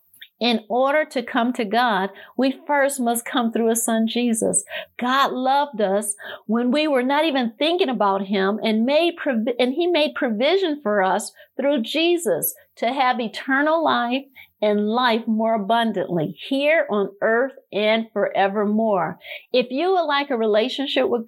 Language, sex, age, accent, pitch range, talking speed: English, female, 50-69, American, 220-285 Hz, 155 wpm